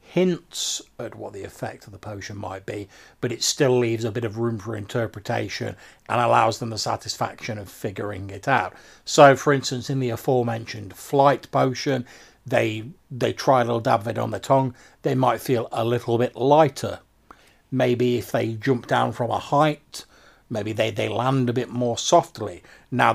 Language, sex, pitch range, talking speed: English, male, 110-135 Hz, 185 wpm